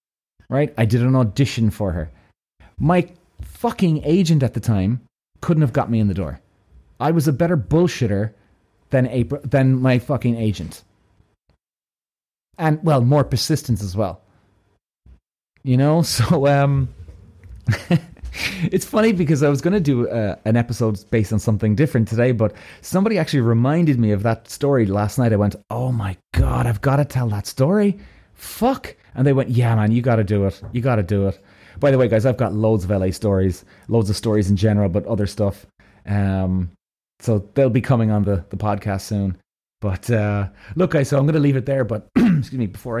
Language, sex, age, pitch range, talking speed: English, male, 30-49, 100-135 Hz, 185 wpm